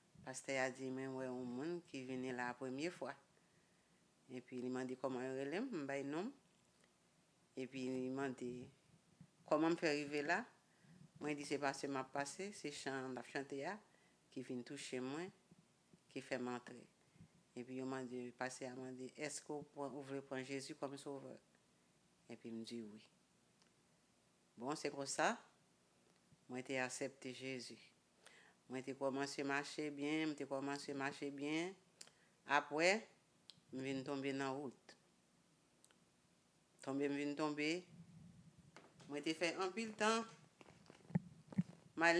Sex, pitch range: female, 130-160 Hz